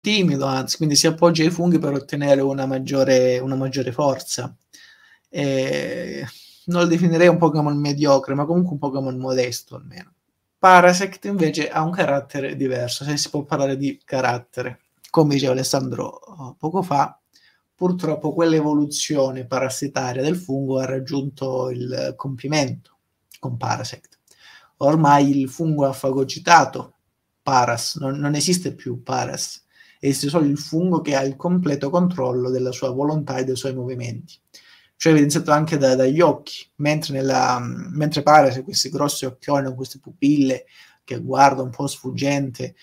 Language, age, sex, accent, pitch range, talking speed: Italian, 30-49, male, native, 130-155 Hz, 145 wpm